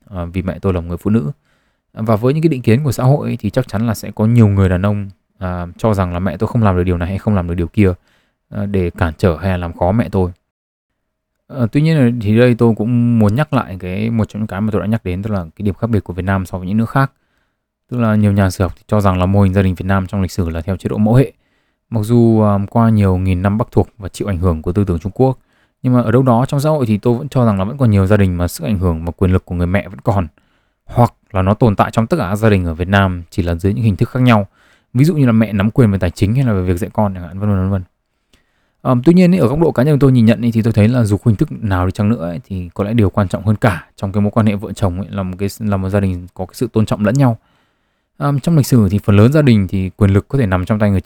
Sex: male